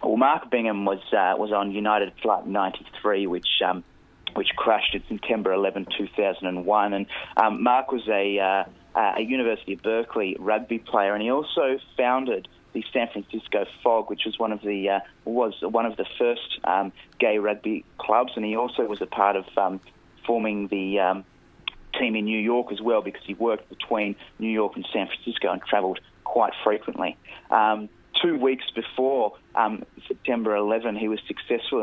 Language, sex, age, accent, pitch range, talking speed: English, male, 30-49, Australian, 100-115 Hz, 175 wpm